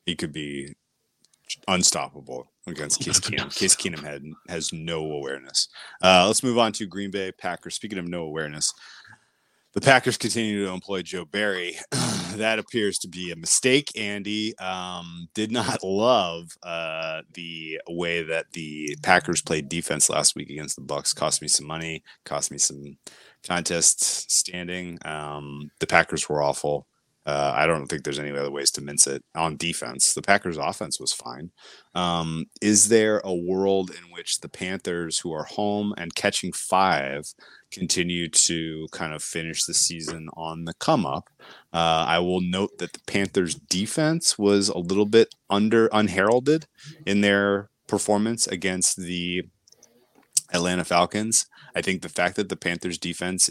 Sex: male